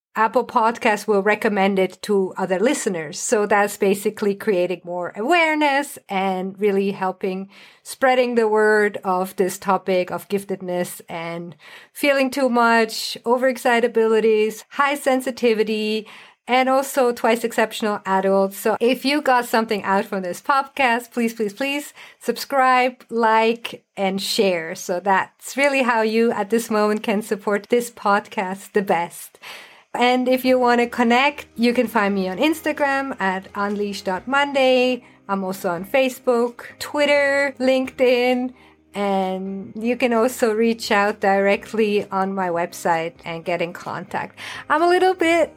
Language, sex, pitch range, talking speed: English, female, 200-260 Hz, 140 wpm